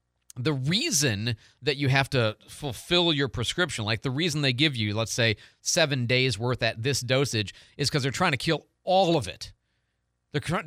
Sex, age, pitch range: male, 40-59, 115-150 Hz